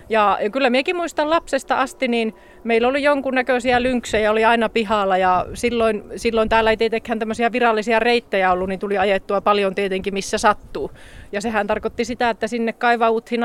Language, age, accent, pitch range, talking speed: Finnish, 30-49, native, 200-245 Hz, 175 wpm